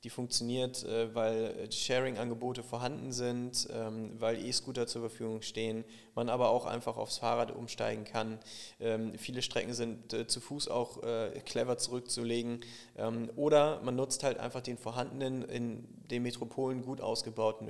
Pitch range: 115-135 Hz